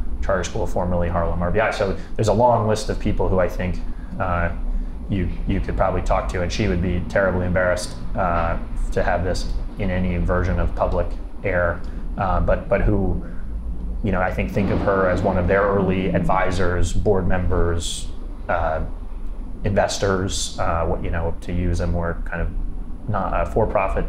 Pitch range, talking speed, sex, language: 85-100 Hz, 180 wpm, male, English